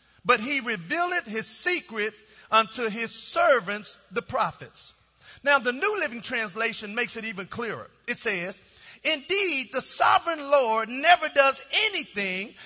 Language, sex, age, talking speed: English, male, 40-59, 135 wpm